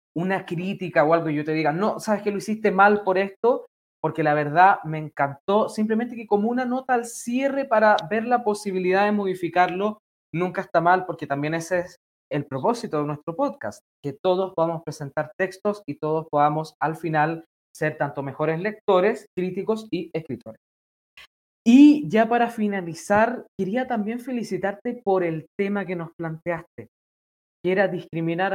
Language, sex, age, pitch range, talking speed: Spanish, male, 20-39, 155-215 Hz, 165 wpm